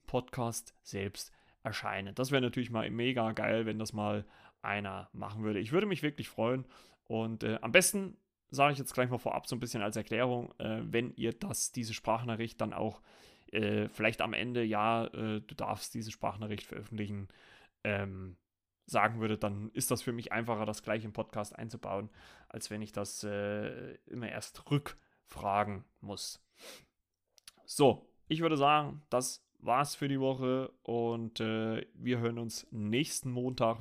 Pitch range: 105-130 Hz